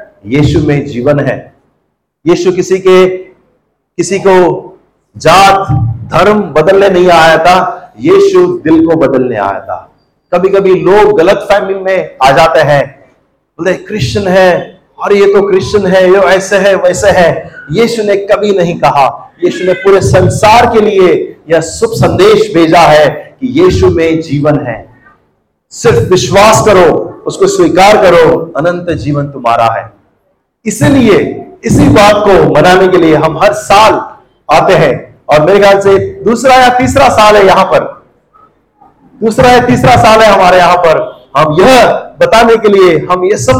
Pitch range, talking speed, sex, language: 160-220 Hz, 155 wpm, male, Hindi